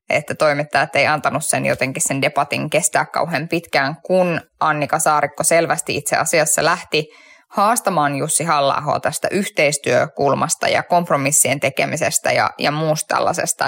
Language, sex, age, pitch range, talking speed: Finnish, female, 10-29, 160-210 Hz, 130 wpm